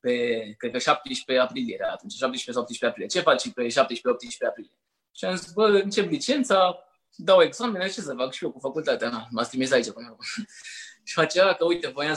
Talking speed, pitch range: 185 wpm, 135-225 Hz